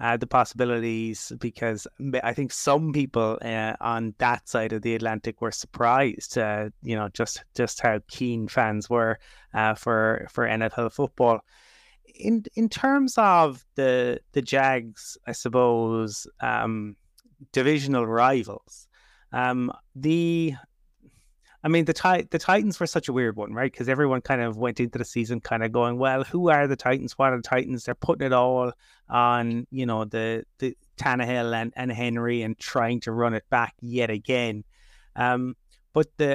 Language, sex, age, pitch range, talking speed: English, male, 30-49, 115-135 Hz, 165 wpm